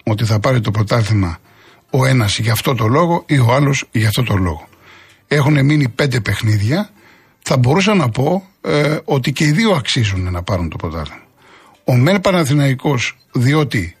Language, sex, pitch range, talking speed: Greek, male, 110-150 Hz, 170 wpm